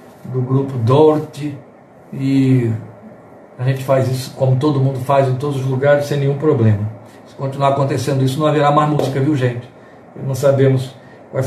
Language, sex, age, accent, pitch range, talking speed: Portuguese, male, 60-79, Brazilian, 145-195 Hz, 165 wpm